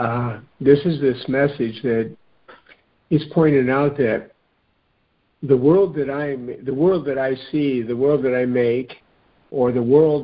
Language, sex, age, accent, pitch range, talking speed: English, male, 50-69, American, 120-145 Hz, 160 wpm